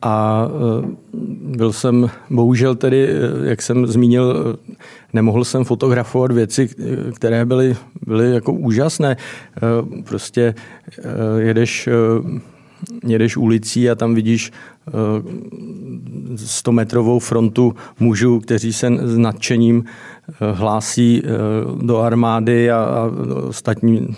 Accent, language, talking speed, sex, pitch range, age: native, Czech, 85 wpm, male, 110-120 Hz, 40-59